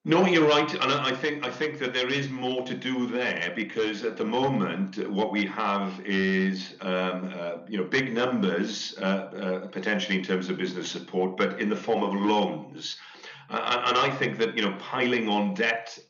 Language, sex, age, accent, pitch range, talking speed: English, male, 40-59, British, 95-110 Hz, 200 wpm